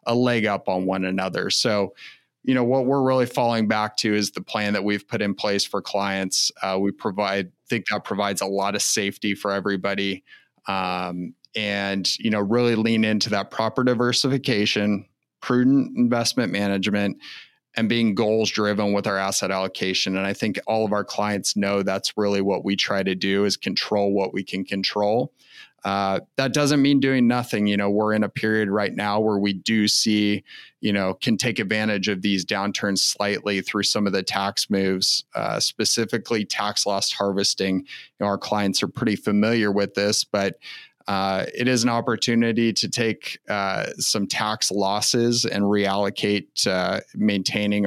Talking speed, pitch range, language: 180 wpm, 100-110 Hz, English